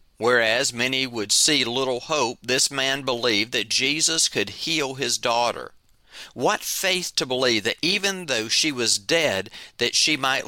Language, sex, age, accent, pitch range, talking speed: English, male, 40-59, American, 110-150 Hz, 160 wpm